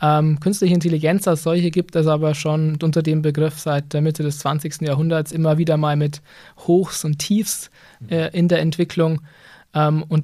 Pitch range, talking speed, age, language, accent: 150-175 Hz, 180 wpm, 20-39, German, German